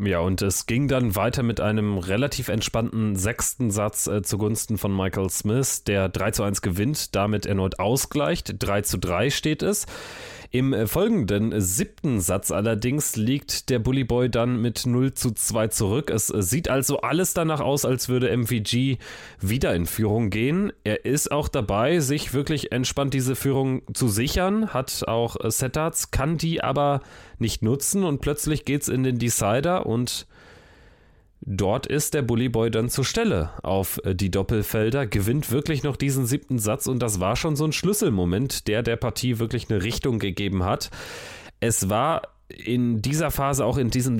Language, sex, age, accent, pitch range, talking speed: German, male, 30-49, German, 100-135 Hz, 165 wpm